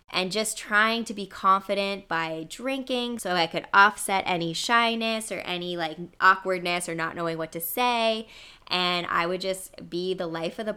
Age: 10-29